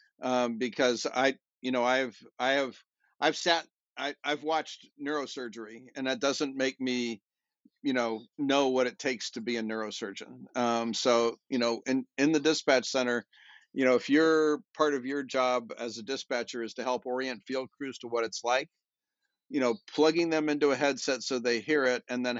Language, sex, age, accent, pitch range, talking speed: English, male, 50-69, American, 120-140 Hz, 195 wpm